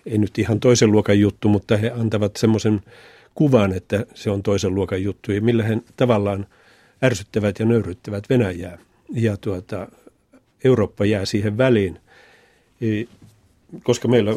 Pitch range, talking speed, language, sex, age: 100-115 Hz, 130 wpm, Finnish, male, 50-69